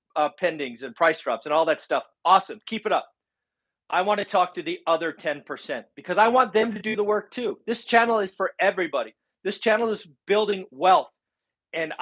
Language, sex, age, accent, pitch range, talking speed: English, male, 40-59, American, 165-210 Hz, 205 wpm